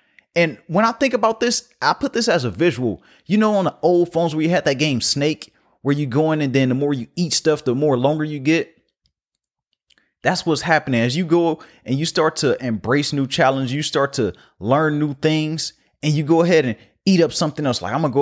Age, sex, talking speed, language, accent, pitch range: 30-49, male, 235 wpm, English, American, 135-170 Hz